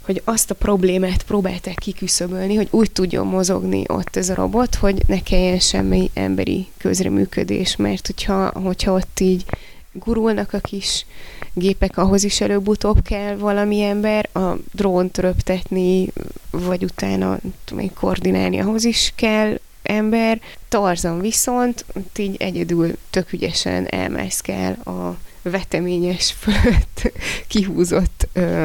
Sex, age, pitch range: female, 20-39, 175-200 Hz